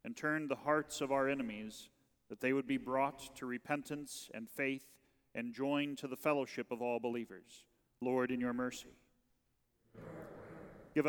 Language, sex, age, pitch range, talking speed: English, male, 40-59, 125-145 Hz, 155 wpm